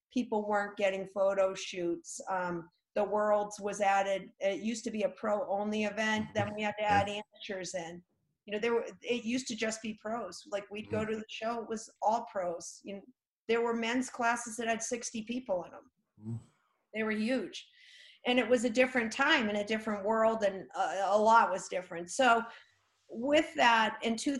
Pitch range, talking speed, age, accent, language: 195-240 Hz, 200 wpm, 40-59, American, English